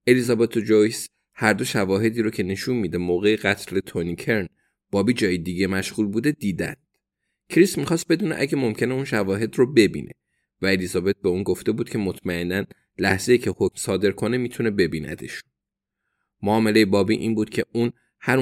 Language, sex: Persian, male